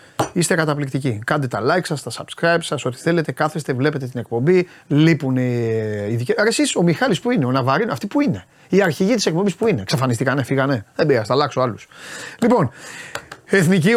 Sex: male